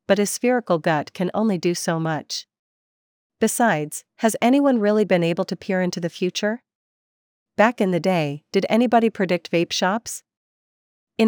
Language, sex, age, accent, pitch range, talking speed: English, female, 40-59, American, 165-205 Hz, 160 wpm